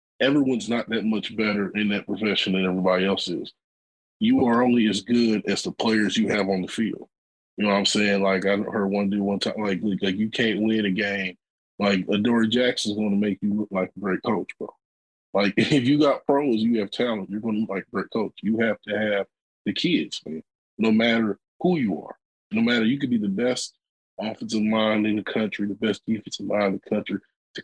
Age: 20-39